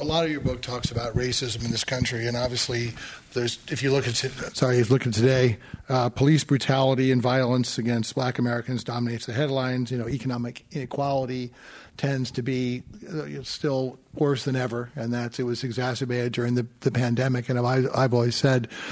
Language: English